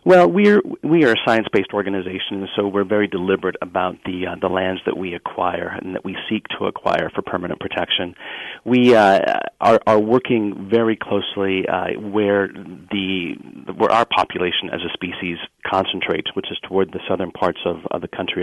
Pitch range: 95-105 Hz